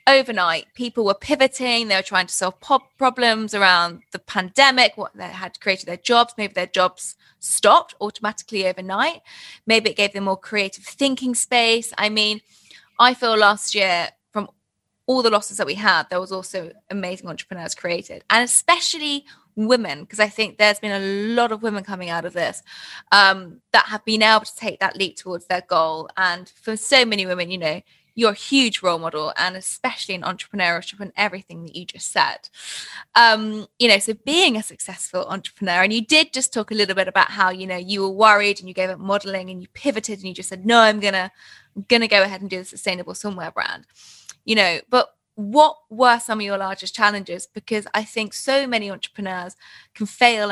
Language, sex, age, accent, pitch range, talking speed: English, female, 20-39, British, 185-230 Hz, 200 wpm